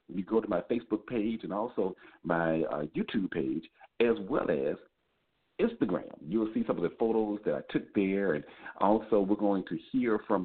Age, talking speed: 50-69, 195 wpm